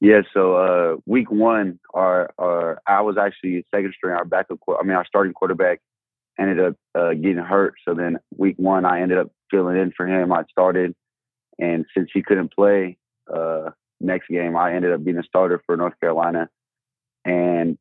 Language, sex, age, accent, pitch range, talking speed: English, male, 20-39, American, 90-105 Hz, 185 wpm